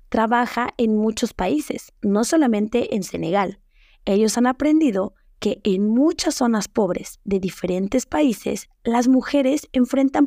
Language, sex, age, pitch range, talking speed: Spanish, female, 30-49, 195-260 Hz, 130 wpm